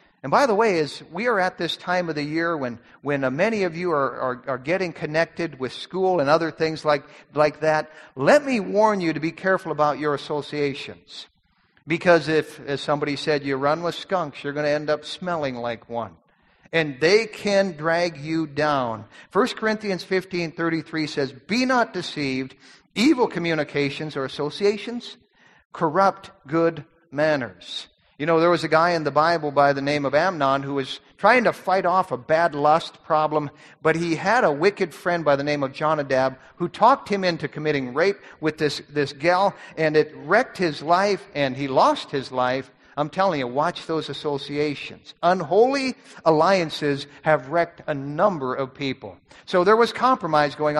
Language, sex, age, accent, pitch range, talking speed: English, male, 50-69, American, 145-185 Hz, 180 wpm